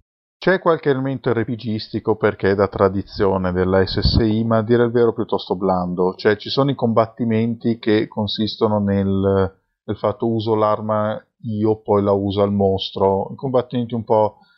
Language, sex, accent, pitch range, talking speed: Italian, male, native, 100-120 Hz, 160 wpm